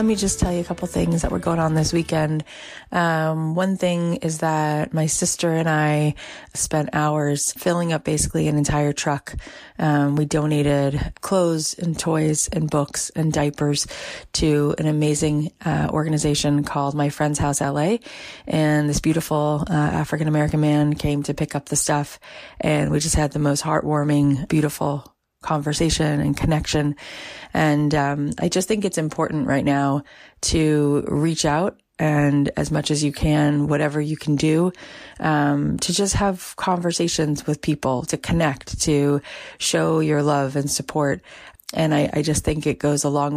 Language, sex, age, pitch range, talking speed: English, female, 30-49, 145-160 Hz, 165 wpm